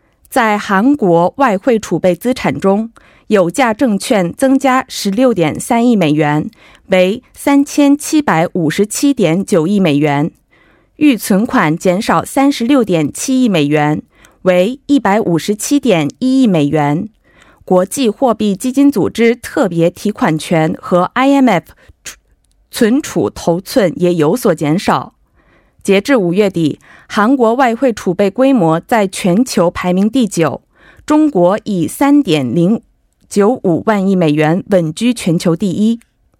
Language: Korean